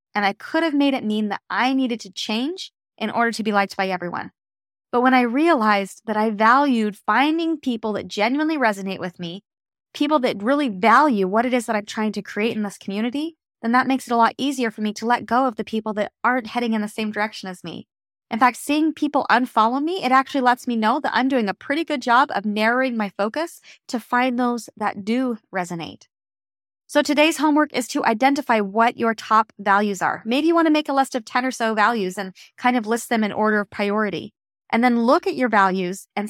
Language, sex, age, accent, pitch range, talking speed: English, female, 20-39, American, 210-265 Hz, 230 wpm